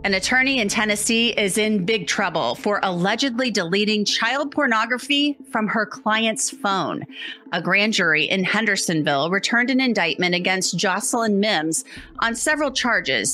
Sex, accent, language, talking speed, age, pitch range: female, American, English, 140 wpm, 30-49, 180-235 Hz